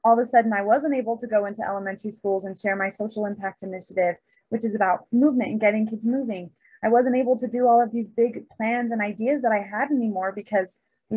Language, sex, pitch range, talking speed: English, female, 200-245 Hz, 235 wpm